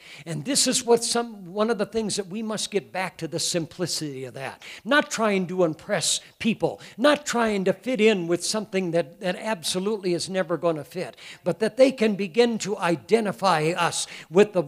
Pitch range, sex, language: 165-215 Hz, male, English